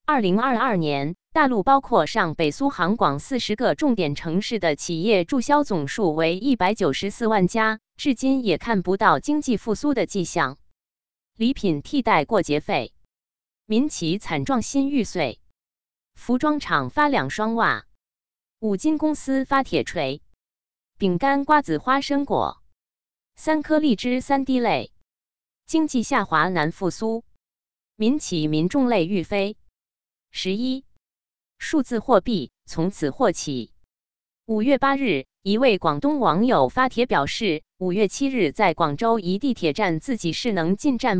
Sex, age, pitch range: female, 20-39, 165-255 Hz